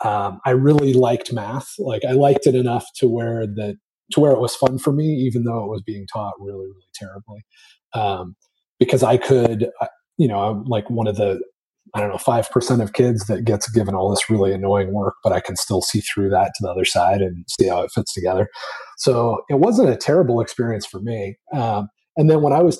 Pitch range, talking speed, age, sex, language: 100-125 Hz, 225 wpm, 30-49, male, English